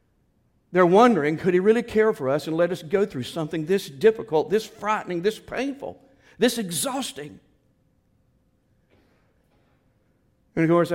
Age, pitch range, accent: 60-79, 120-160 Hz, American